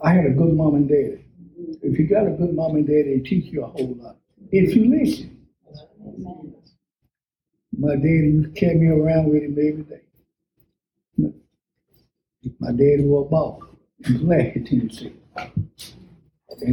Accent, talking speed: American, 155 wpm